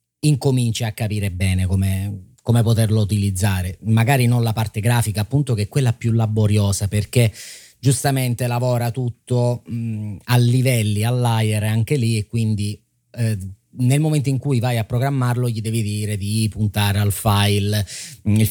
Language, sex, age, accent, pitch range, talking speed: Italian, male, 30-49, native, 100-120 Hz, 150 wpm